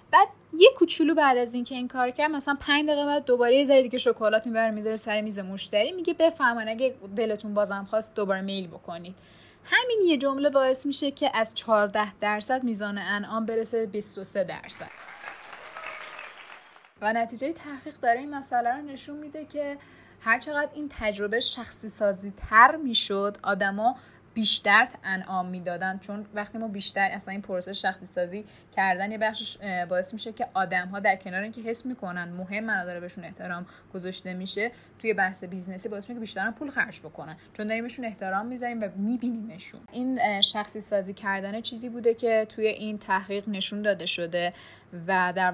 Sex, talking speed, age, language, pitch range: female, 165 wpm, 10-29, Persian, 195-245 Hz